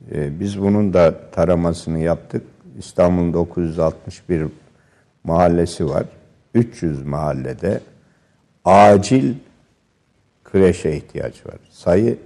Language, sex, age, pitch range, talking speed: Turkish, male, 60-79, 85-110 Hz, 80 wpm